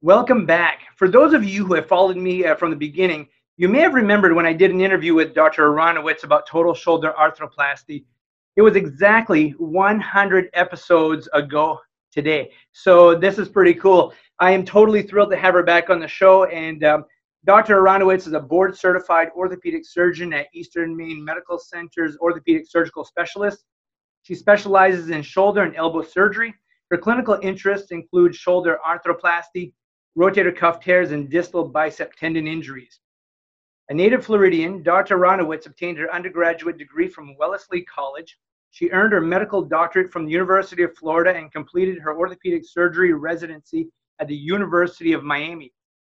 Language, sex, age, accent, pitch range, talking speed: English, male, 30-49, American, 160-190 Hz, 165 wpm